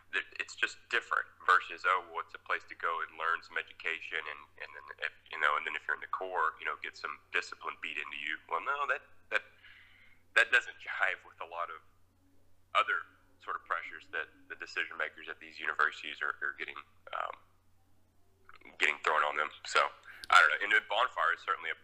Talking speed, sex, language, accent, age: 205 wpm, male, English, American, 20-39